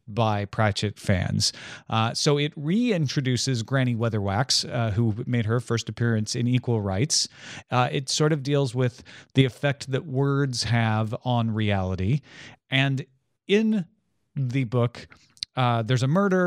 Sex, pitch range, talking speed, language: male, 110-145 Hz, 140 wpm, English